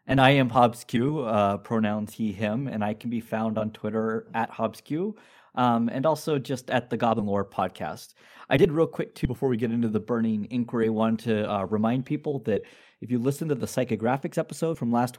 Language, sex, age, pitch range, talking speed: English, male, 30-49, 110-130 Hz, 210 wpm